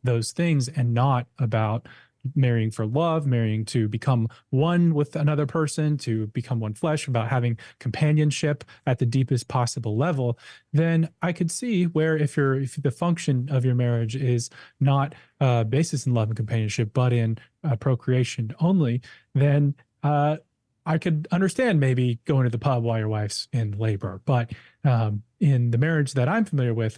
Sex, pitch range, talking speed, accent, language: male, 120-155 Hz, 175 wpm, American, English